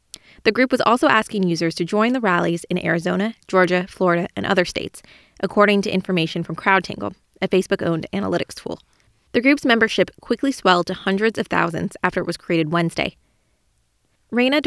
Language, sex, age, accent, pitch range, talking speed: English, female, 20-39, American, 175-220 Hz, 170 wpm